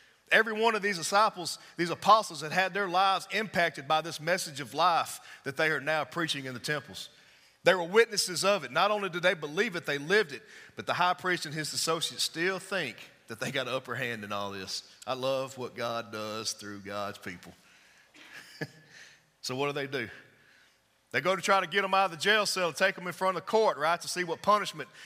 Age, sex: 40-59, male